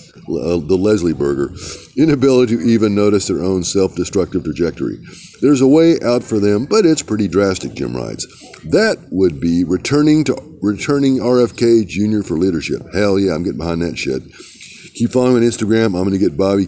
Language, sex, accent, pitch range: English, male, American, 90-120 Hz